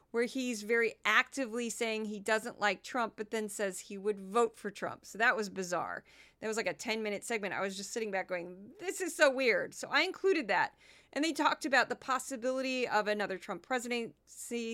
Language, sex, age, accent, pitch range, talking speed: English, female, 40-59, American, 215-275 Hz, 210 wpm